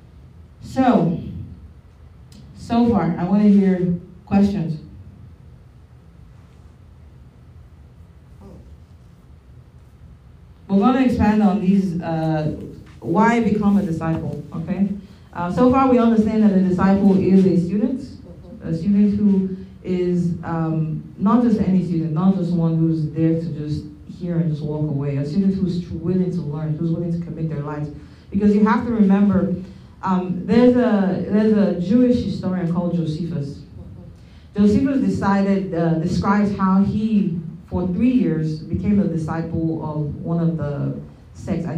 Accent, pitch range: American, 165-205 Hz